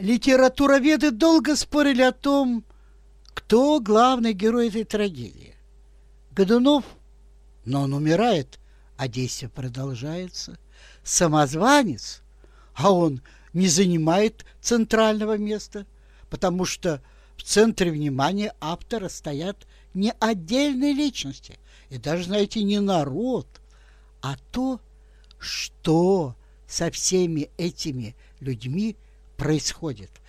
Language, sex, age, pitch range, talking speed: Russian, male, 60-79, 145-235 Hz, 95 wpm